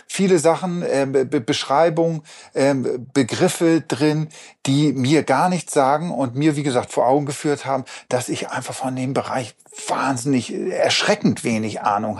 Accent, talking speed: German, 155 wpm